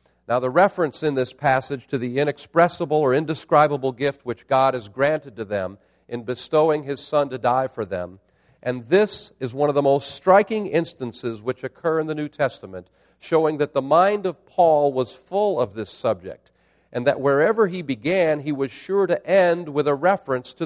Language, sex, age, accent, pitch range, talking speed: English, male, 50-69, American, 130-180 Hz, 190 wpm